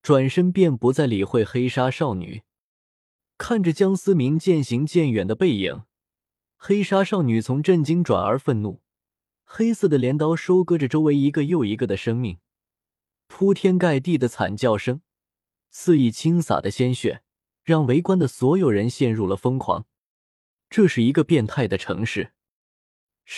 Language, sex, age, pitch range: Chinese, male, 20-39, 110-165 Hz